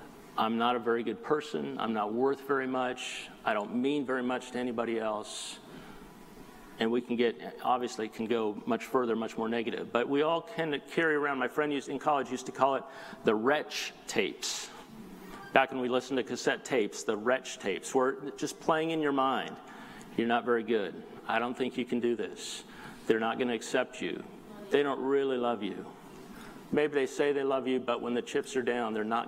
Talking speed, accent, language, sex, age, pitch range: 205 wpm, American, English, male, 50-69, 125-155 Hz